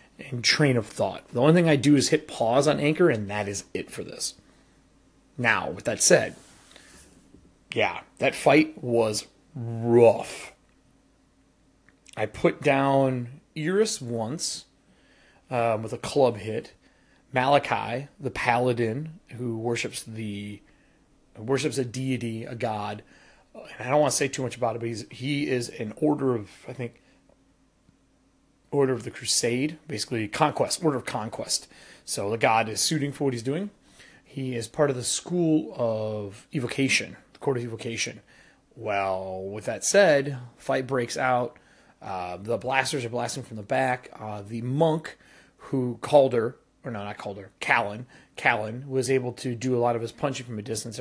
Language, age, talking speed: English, 30-49, 165 wpm